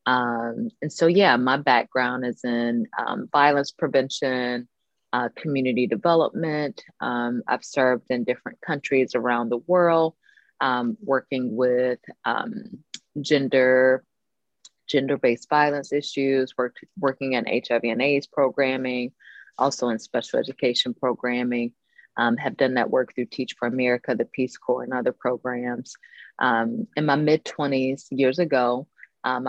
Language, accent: English, American